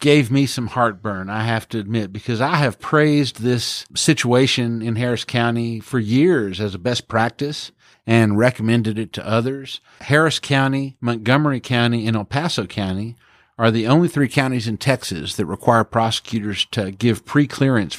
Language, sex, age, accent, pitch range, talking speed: English, male, 50-69, American, 110-135 Hz, 165 wpm